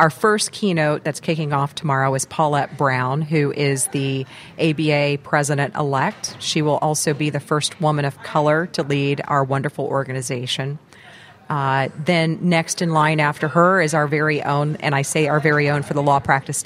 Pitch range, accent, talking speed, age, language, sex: 140-160 Hz, American, 180 wpm, 40-59, English, female